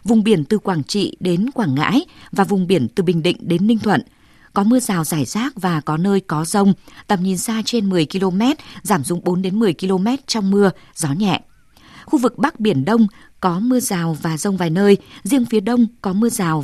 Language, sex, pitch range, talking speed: Vietnamese, female, 180-230 Hz, 220 wpm